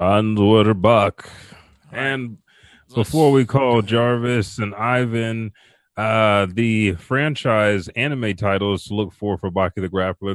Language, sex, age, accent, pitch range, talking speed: English, male, 30-49, American, 95-110 Hz, 115 wpm